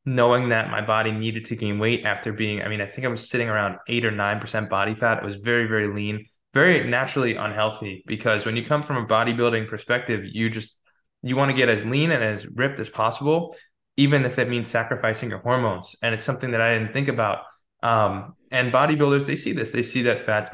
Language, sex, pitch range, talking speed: English, male, 110-125 Hz, 225 wpm